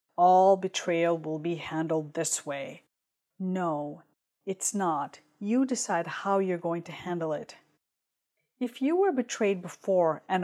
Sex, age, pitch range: female, 40-59, 175-210 Hz